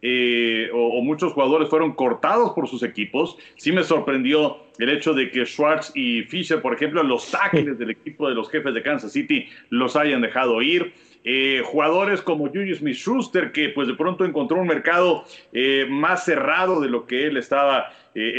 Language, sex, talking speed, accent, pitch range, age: Spanish, male, 190 wpm, Mexican, 135-195 Hz, 40-59